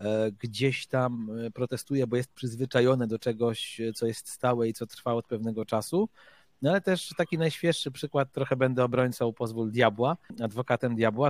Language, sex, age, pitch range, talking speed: Polish, male, 40-59, 120-140 Hz, 160 wpm